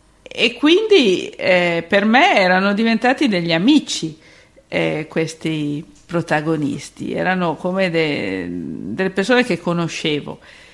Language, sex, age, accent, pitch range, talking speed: Italian, female, 50-69, native, 160-195 Hz, 105 wpm